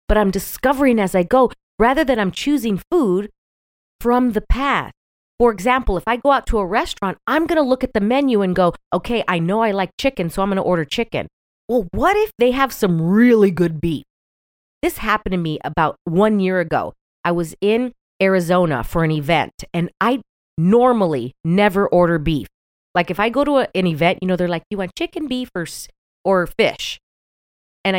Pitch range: 165-225 Hz